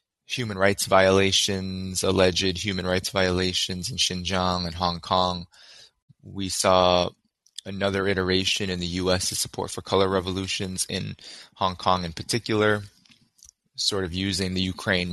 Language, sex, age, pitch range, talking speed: English, male, 20-39, 90-100 Hz, 135 wpm